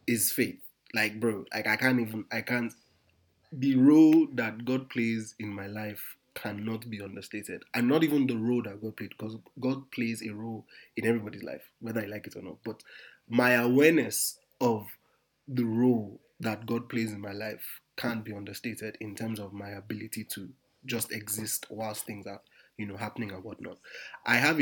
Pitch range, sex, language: 105-120 Hz, male, English